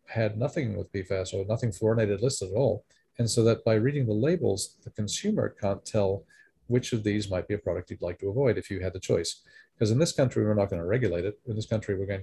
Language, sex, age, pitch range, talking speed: English, male, 40-59, 100-125 Hz, 255 wpm